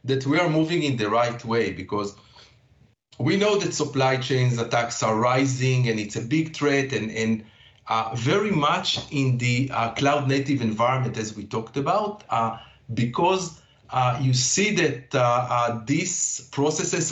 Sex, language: male, English